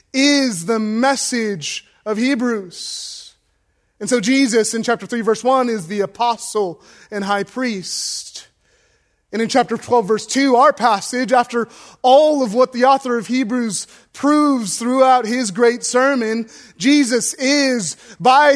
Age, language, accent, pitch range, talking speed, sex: 20-39, English, American, 205-255 Hz, 140 wpm, male